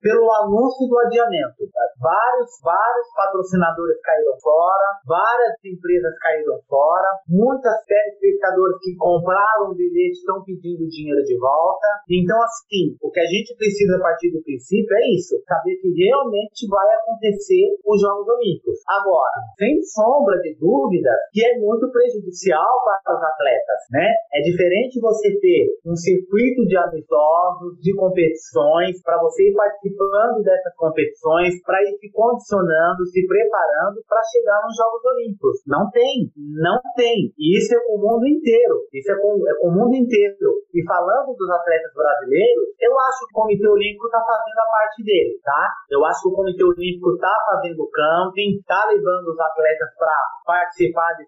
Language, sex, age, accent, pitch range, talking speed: Portuguese, male, 30-49, Brazilian, 180-245 Hz, 165 wpm